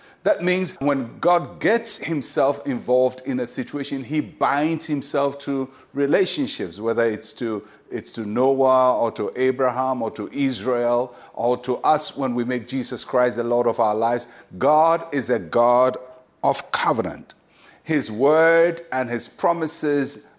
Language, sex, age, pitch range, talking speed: English, male, 50-69, 125-165 Hz, 150 wpm